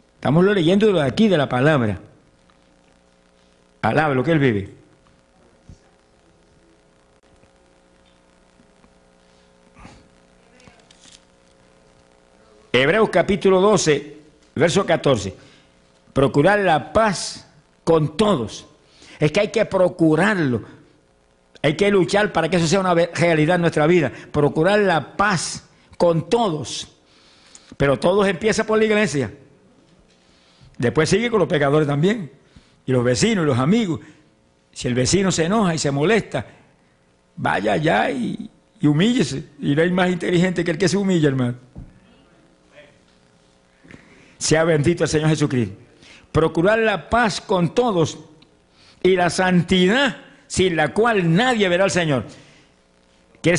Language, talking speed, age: English, 120 wpm, 60-79